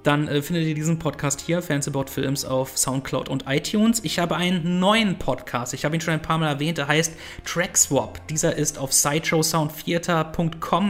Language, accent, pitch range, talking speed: English, German, 135-165 Hz, 180 wpm